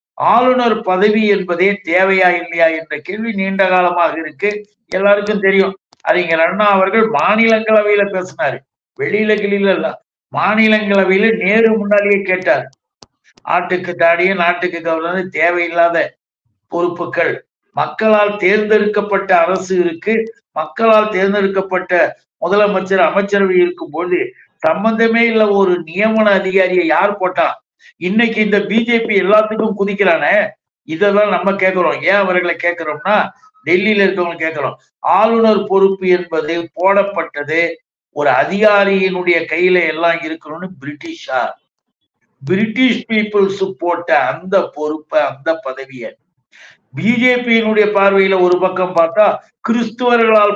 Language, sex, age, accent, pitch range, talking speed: Tamil, male, 60-79, native, 175-215 Hz, 95 wpm